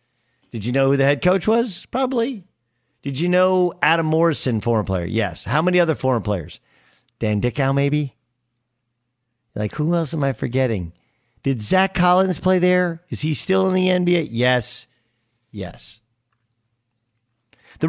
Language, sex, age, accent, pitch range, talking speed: English, male, 40-59, American, 115-155 Hz, 150 wpm